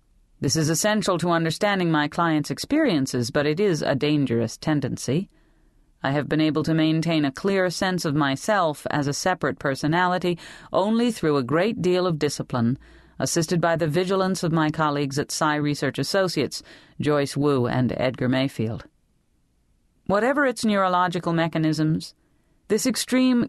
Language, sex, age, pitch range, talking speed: English, female, 40-59, 140-185 Hz, 150 wpm